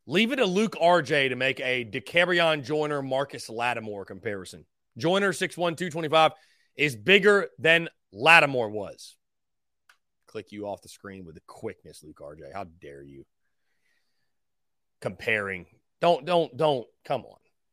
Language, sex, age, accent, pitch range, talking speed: English, male, 30-49, American, 125-195 Hz, 130 wpm